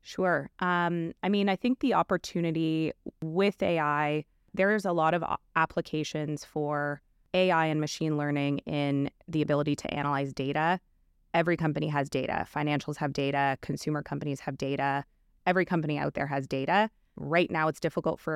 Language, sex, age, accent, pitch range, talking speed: English, female, 20-39, American, 145-165 Hz, 160 wpm